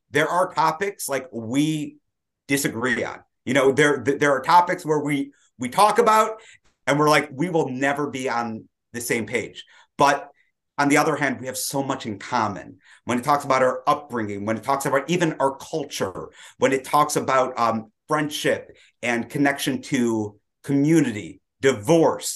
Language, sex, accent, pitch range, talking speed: English, male, American, 120-150 Hz, 170 wpm